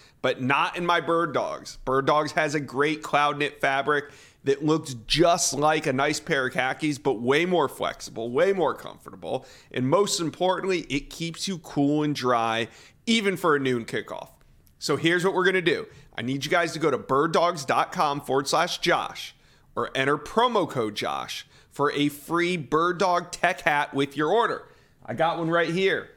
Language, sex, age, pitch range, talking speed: English, male, 40-59, 130-165 Hz, 185 wpm